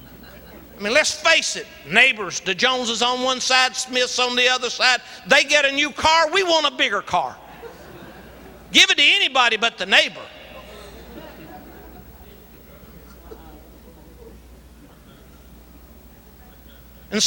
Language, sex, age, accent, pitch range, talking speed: English, male, 60-79, American, 185-275 Hz, 120 wpm